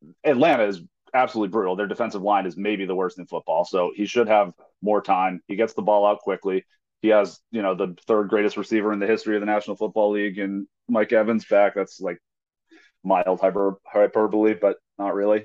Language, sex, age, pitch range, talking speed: English, male, 30-49, 105-125 Hz, 205 wpm